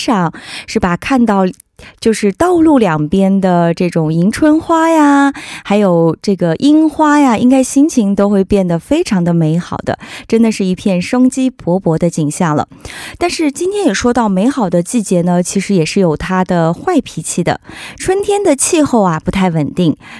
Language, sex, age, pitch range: Korean, female, 20-39, 180-280 Hz